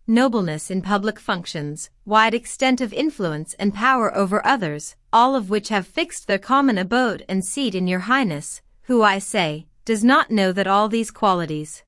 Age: 30-49